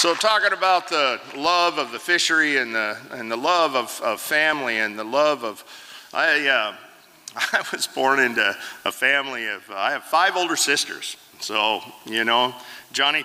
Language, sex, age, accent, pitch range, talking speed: English, male, 50-69, American, 140-195 Hz, 175 wpm